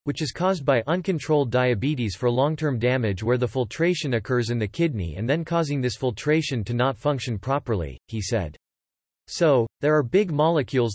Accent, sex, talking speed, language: American, male, 180 wpm, English